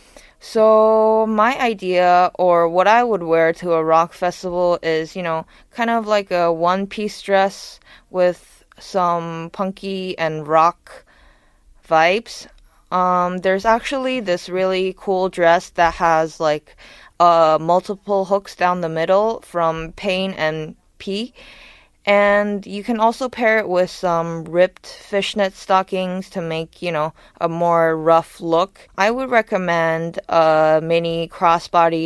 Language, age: Korean, 20-39